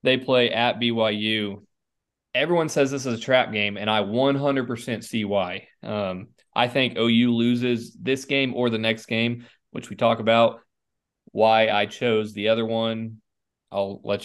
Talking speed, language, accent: 165 wpm, English, American